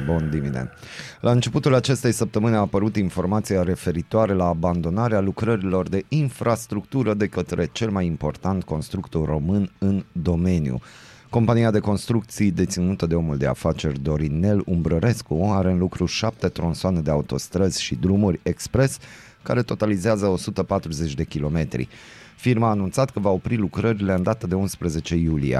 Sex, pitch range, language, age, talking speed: male, 85-110 Hz, Romanian, 30-49, 140 wpm